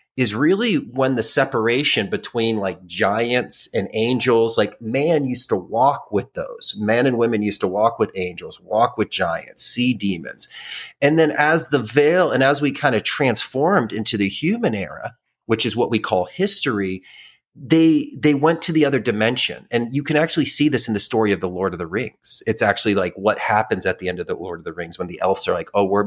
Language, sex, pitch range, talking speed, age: English, male, 110-150 Hz, 215 wpm, 30-49